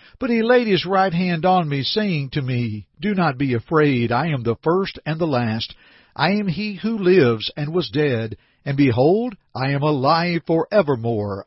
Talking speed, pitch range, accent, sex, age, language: 195 wpm, 125-175 Hz, American, male, 50-69, English